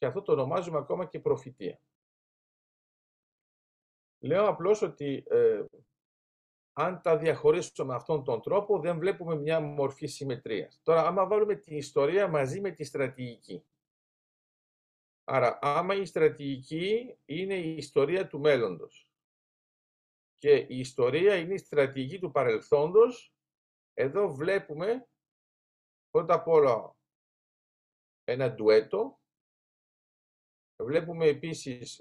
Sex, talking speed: male, 105 wpm